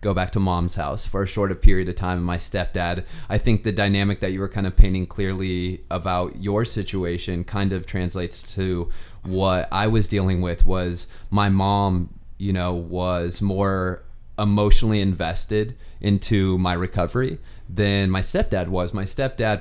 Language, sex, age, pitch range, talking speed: English, male, 20-39, 90-105 Hz, 170 wpm